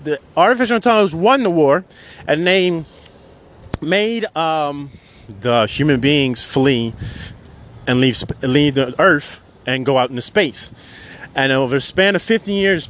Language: English